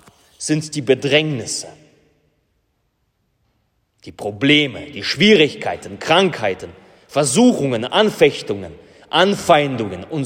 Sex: male